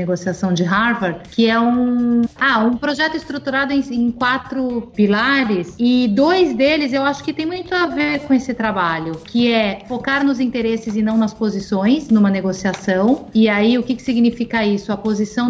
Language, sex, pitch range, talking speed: Portuguese, female, 205-250 Hz, 180 wpm